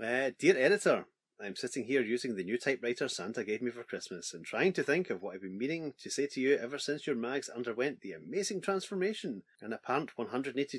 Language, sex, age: English, male, 30-49